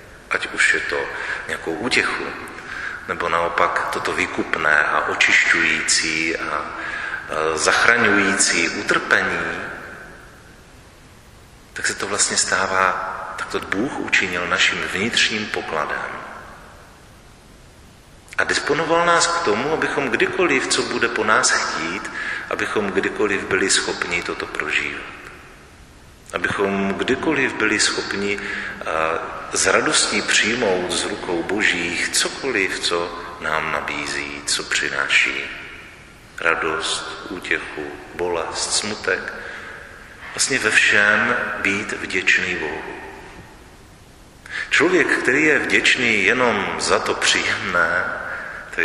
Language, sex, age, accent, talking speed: Czech, male, 40-59, native, 100 wpm